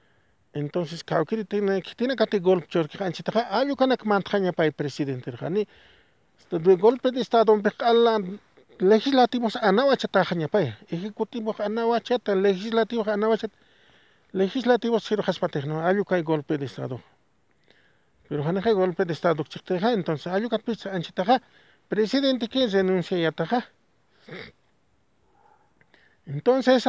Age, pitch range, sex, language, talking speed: 50-69, 165-230 Hz, male, English, 80 wpm